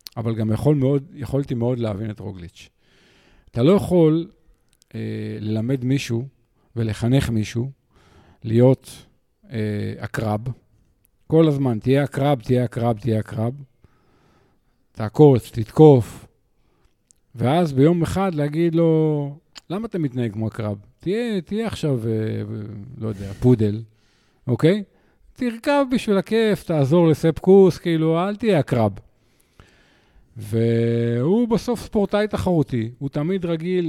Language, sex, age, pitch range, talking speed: Hebrew, male, 50-69, 110-165 Hz, 115 wpm